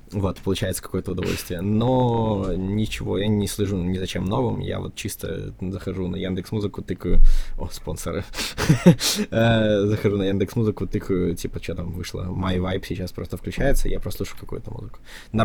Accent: native